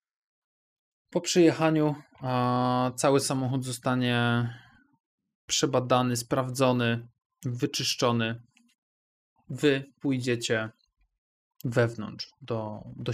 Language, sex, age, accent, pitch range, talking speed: Polish, male, 20-39, native, 120-140 Hz, 60 wpm